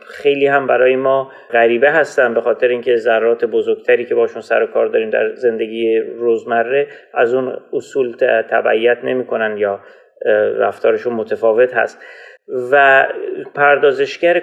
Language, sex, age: Persian, male, 30-49